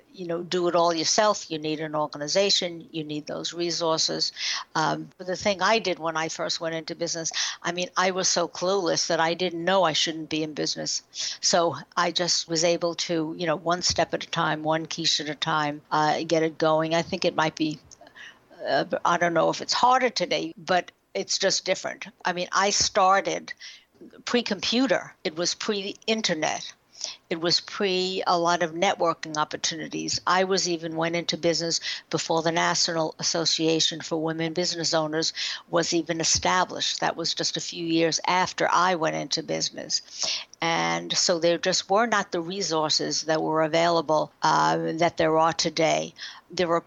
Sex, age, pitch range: female, 60-79, 160-180 Hz